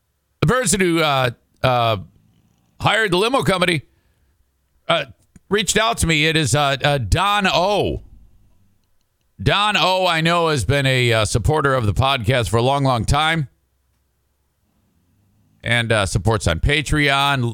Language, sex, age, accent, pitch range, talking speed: English, male, 50-69, American, 95-140 Hz, 145 wpm